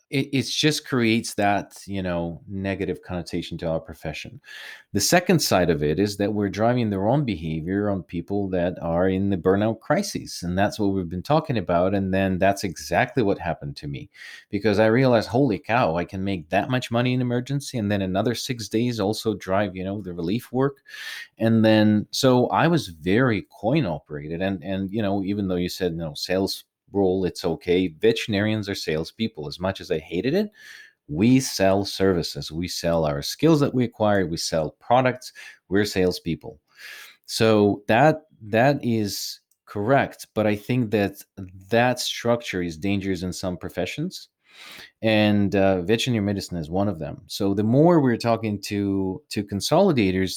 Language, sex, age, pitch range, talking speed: English, male, 30-49, 90-115 Hz, 180 wpm